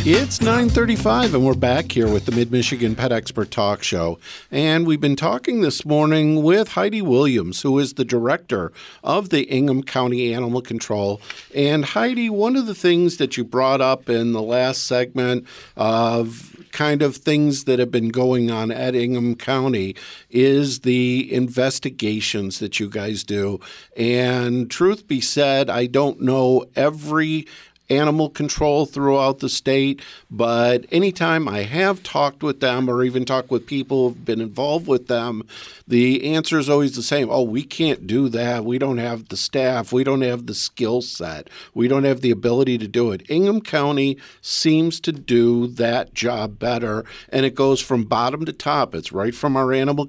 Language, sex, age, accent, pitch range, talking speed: English, male, 50-69, American, 120-140 Hz, 175 wpm